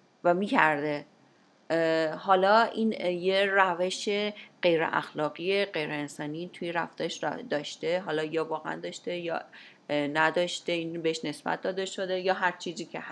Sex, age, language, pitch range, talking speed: female, 30-49, English, 155-190 Hz, 130 wpm